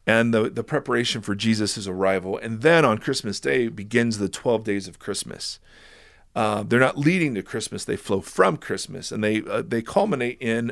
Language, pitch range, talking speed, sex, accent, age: English, 110-135 Hz, 190 wpm, male, American, 40-59